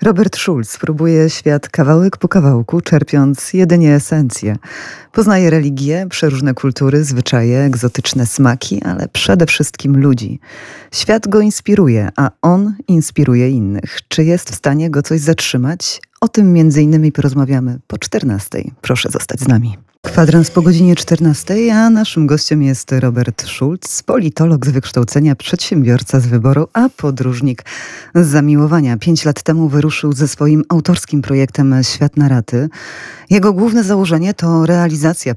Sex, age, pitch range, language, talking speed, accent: female, 30-49, 130-170 Hz, Polish, 140 wpm, native